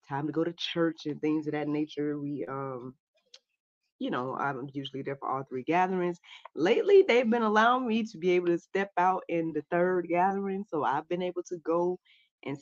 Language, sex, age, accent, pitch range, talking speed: English, female, 20-39, American, 135-185 Hz, 205 wpm